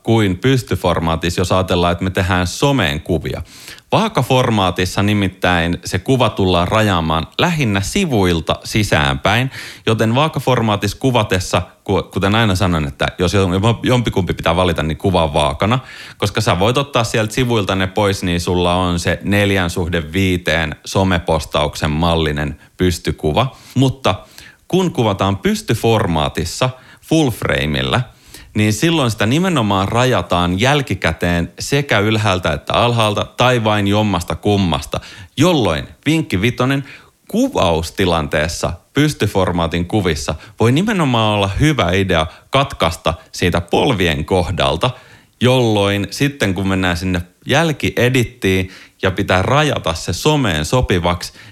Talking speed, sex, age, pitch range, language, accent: 115 wpm, male, 30-49, 90-120 Hz, Finnish, native